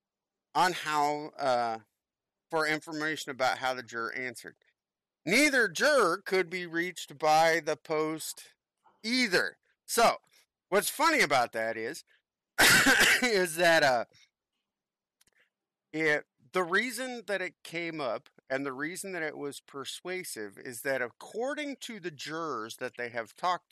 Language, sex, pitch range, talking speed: English, male, 125-165 Hz, 130 wpm